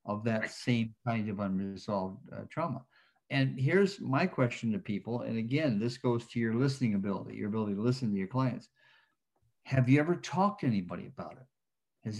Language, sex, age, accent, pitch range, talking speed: English, male, 50-69, American, 120-155 Hz, 185 wpm